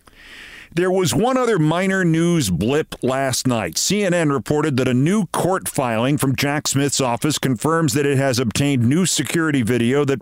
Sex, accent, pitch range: male, American, 120-155 Hz